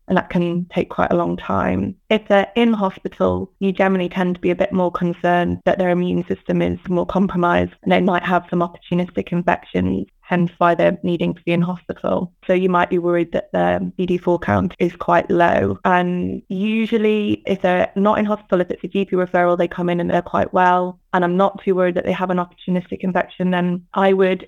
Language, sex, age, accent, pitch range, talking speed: English, female, 20-39, British, 175-190 Hz, 220 wpm